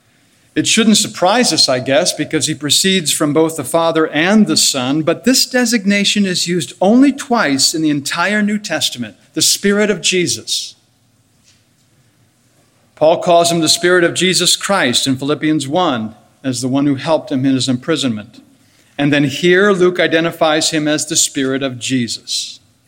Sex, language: male, English